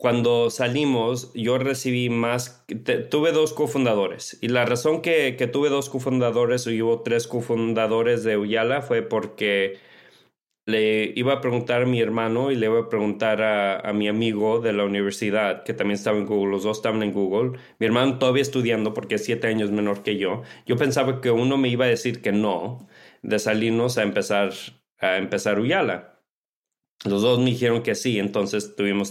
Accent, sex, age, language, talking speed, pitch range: Mexican, male, 40-59, Spanish, 185 wpm, 110-125 Hz